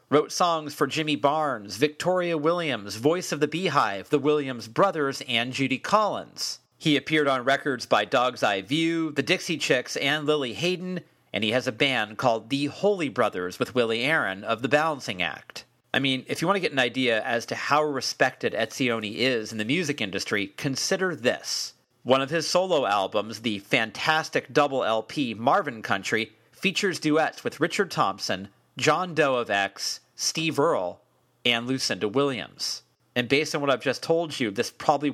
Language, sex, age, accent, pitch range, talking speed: English, male, 40-59, American, 125-155 Hz, 175 wpm